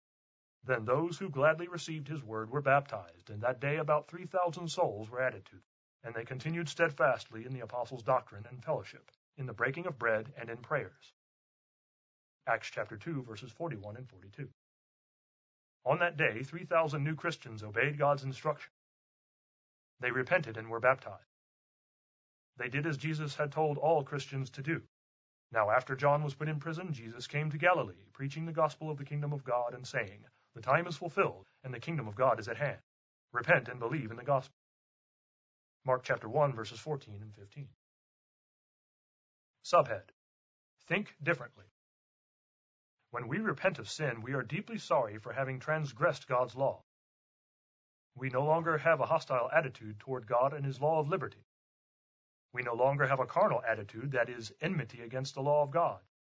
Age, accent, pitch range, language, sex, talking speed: 30-49, American, 115-155 Hz, English, male, 170 wpm